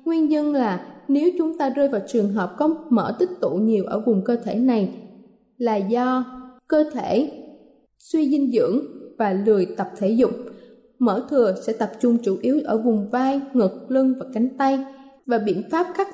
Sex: female